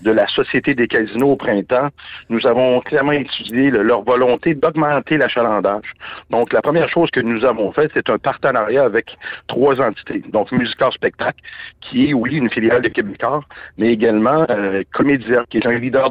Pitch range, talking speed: 115-135 Hz, 175 wpm